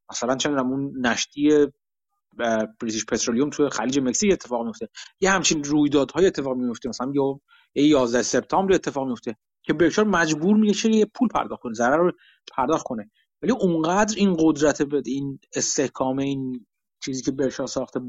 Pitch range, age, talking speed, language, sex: 130-180 Hz, 30-49, 155 wpm, Persian, male